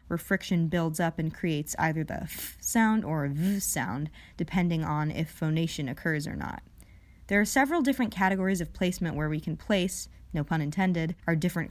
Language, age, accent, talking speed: English, 20-39, American, 180 wpm